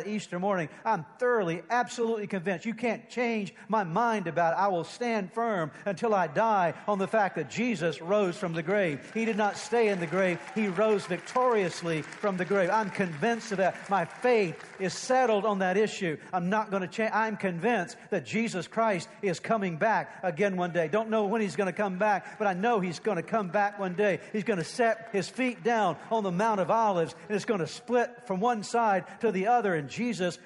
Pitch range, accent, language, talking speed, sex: 175-225 Hz, American, English, 220 wpm, male